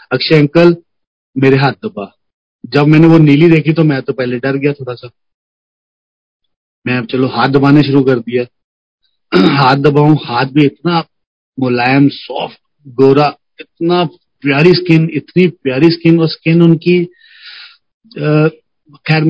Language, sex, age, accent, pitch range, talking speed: Hindi, male, 40-59, native, 130-160 Hz, 135 wpm